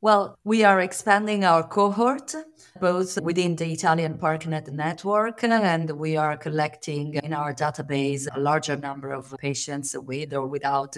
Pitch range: 145-170 Hz